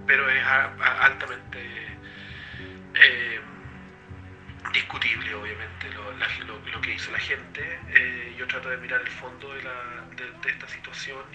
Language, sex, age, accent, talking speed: Spanish, male, 40-59, Argentinian, 125 wpm